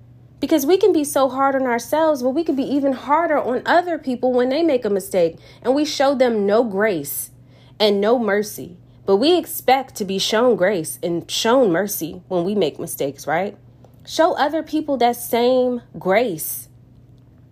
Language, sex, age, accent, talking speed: English, female, 20-39, American, 180 wpm